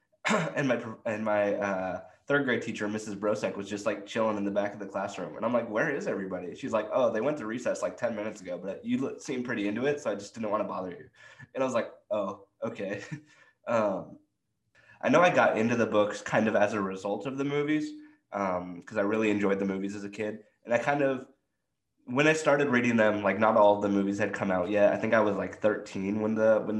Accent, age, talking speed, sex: American, 20-39, 250 wpm, male